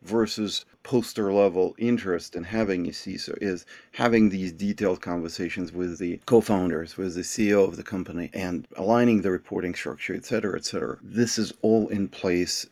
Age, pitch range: 40-59, 85-105 Hz